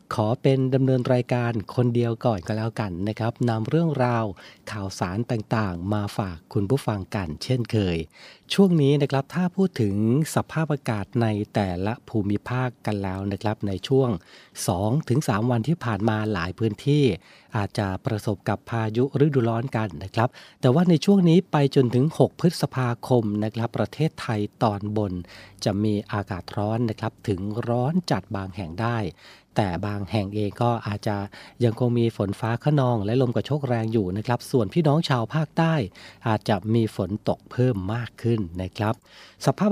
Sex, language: male, Thai